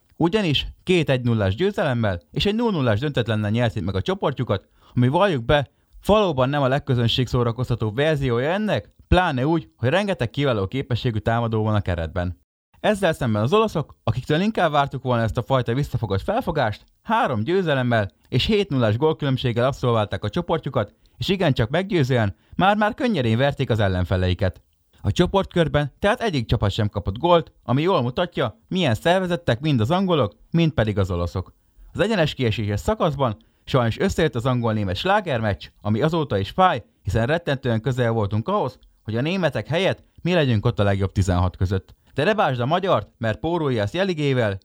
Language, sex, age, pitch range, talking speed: Hungarian, male, 30-49, 105-160 Hz, 160 wpm